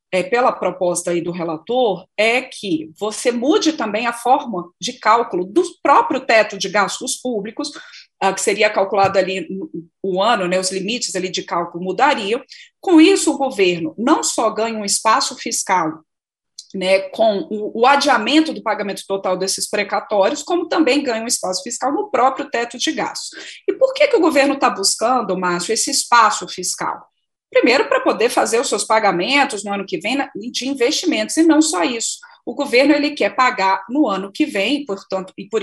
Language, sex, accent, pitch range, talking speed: Portuguese, female, Brazilian, 195-285 Hz, 170 wpm